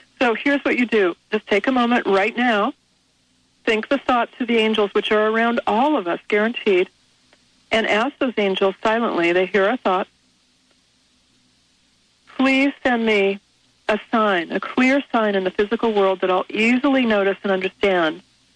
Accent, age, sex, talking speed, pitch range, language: American, 40-59, female, 165 wpm, 195-235 Hz, English